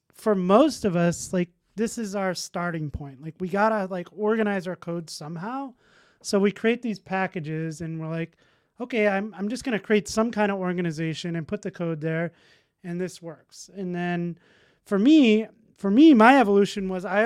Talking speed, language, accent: 190 wpm, English, American